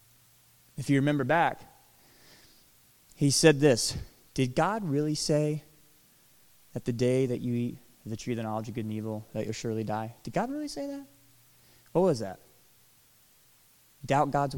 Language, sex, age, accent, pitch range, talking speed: English, male, 20-39, American, 110-140 Hz, 165 wpm